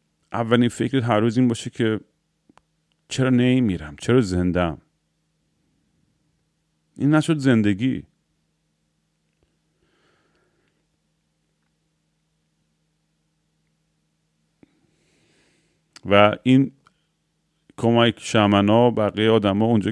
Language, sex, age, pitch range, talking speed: Persian, male, 40-59, 100-125 Hz, 70 wpm